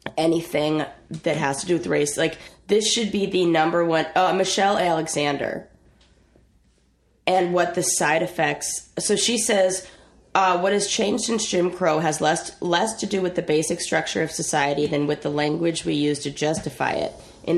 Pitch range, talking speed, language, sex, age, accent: 150-185 Hz, 180 wpm, English, female, 20-39, American